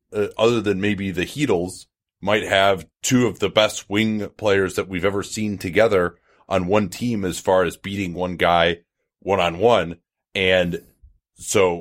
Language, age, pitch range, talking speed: English, 30-49, 90-110 Hz, 160 wpm